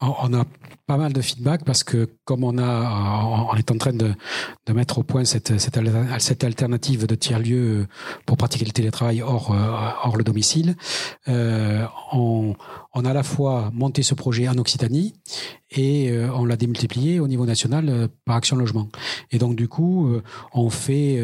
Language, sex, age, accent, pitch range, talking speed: French, male, 40-59, French, 115-140 Hz, 170 wpm